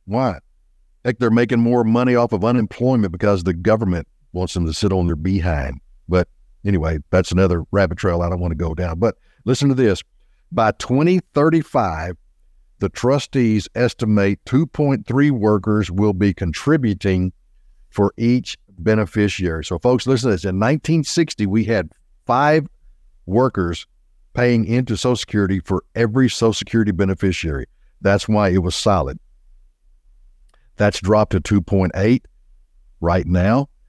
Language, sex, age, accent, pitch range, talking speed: English, male, 60-79, American, 90-115 Hz, 140 wpm